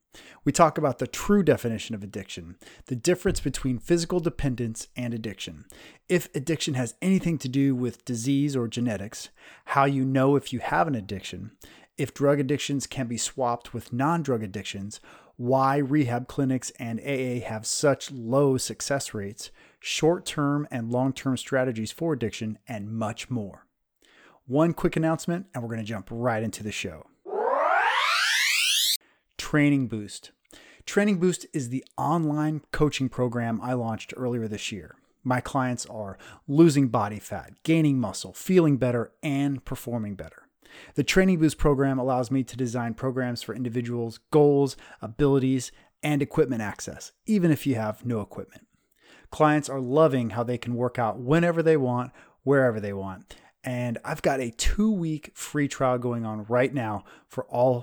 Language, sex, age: English, male, 30-49